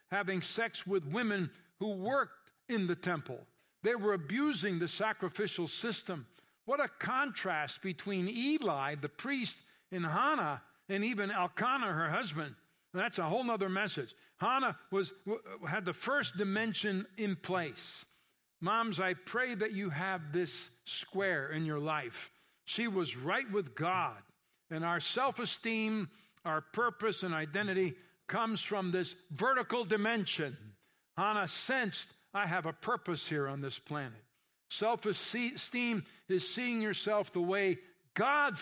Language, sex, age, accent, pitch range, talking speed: English, male, 60-79, American, 170-220 Hz, 135 wpm